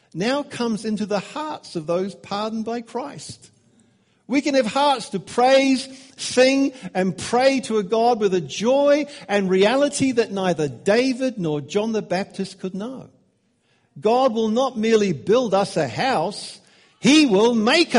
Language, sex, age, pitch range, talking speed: English, male, 60-79, 180-265 Hz, 155 wpm